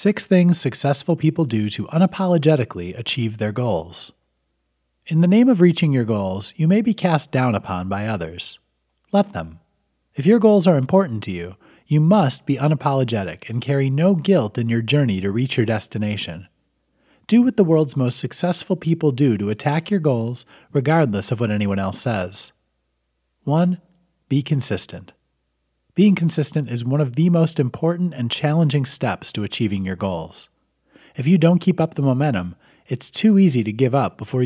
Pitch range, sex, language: 95-160 Hz, male, English